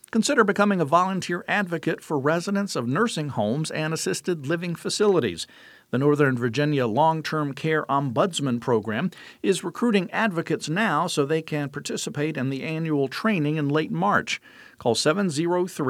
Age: 50-69